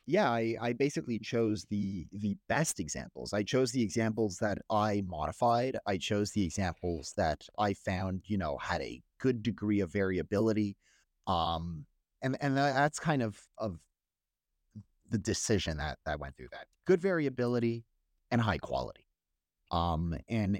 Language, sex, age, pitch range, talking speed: English, male, 30-49, 95-130 Hz, 150 wpm